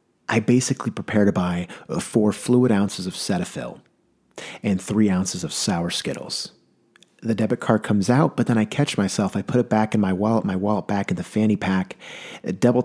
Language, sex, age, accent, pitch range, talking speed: English, male, 30-49, American, 100-120 Hz, 190 wpm